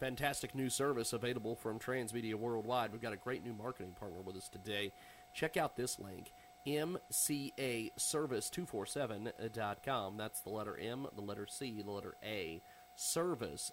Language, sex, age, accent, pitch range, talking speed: English, male, 30-49, American, 110-145 Hz, 150 wpm